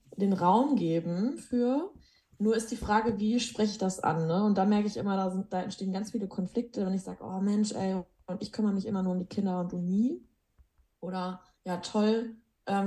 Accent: German